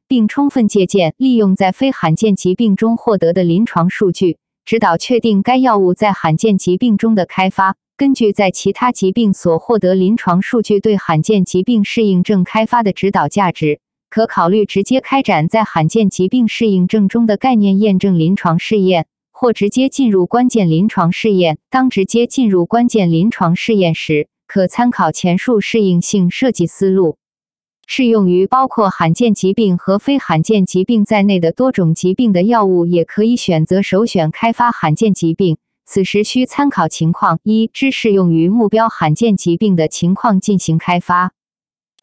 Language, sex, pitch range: Chinese, female, 180-225 Hz